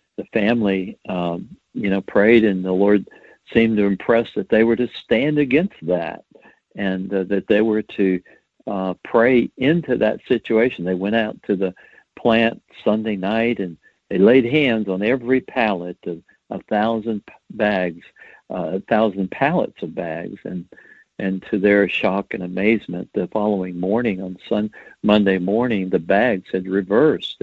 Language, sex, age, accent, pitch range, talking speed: English, male, 60-79, American, 95-120 Hz, 160 wpm